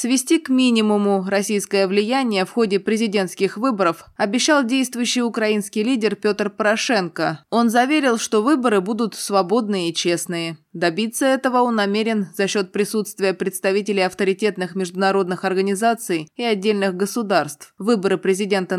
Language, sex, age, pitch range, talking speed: Russian, female, 20-39, 180-220 Hz, 125 wpm